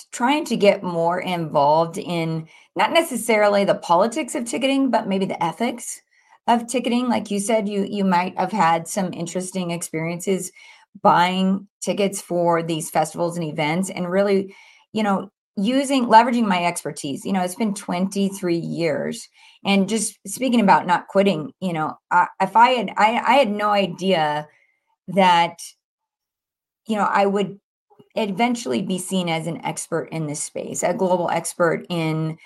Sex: female